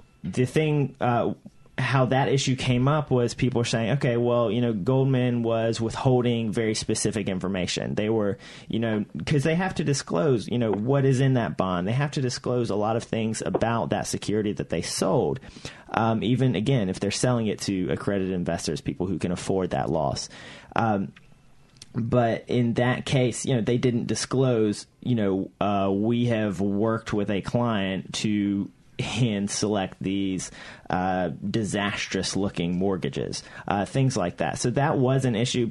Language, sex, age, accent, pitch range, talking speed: English, male, 30-49, American, 105-130 Hz, 175 wpm